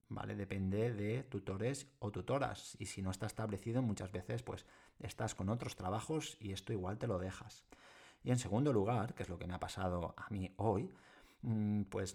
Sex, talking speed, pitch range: male, 195 wpm, 95-125 Hz